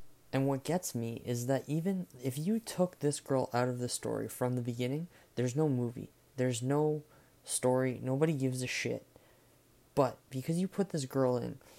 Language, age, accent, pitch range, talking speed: English, 20-39, American, 125-175 Hz, 185 wpm